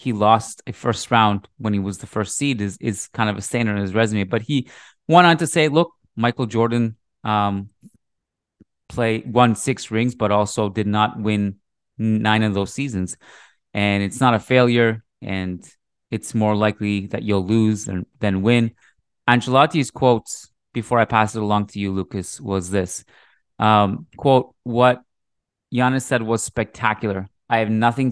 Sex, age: male, 30-49